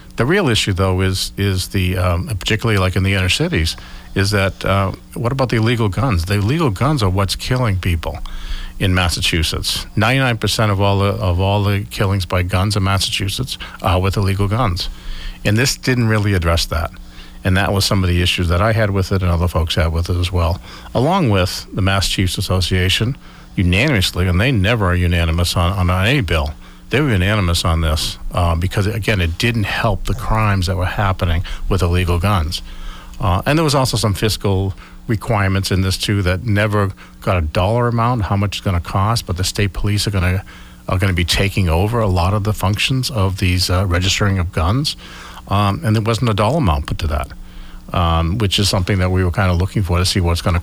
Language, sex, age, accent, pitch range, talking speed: English, male, 50-69, American, 90-105 Hz, 215 wpm